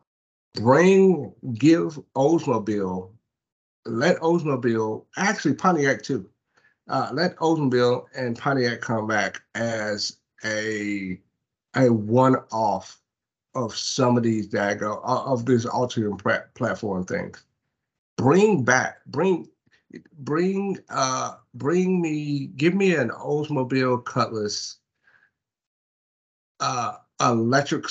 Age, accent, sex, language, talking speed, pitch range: 50-69, American, male, English, 95 wpm, 110-140 Hz